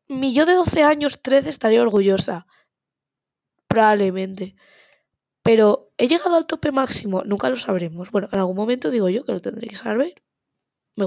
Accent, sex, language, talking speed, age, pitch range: Spanish, female, Spanish, 165 wpm, 20-39, 195-250 Hz